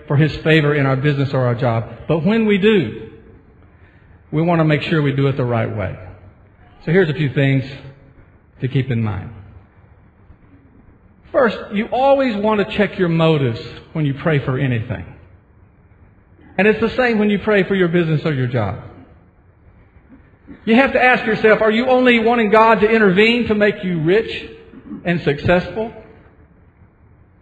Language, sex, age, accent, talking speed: English, male, 50-69, American, 170 wpm